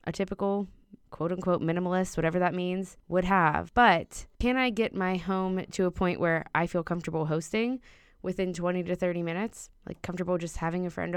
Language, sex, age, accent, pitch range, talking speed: English, female, 20-39, American, 160-220 Hz, 190 wpm